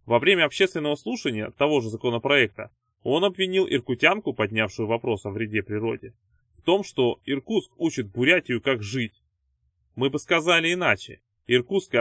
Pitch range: 110-160 Hz